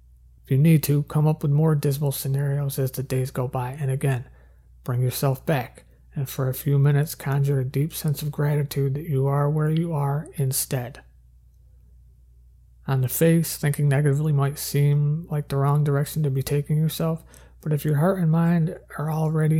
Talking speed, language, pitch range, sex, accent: 185 wpm, English, 125-145 Hz, male, American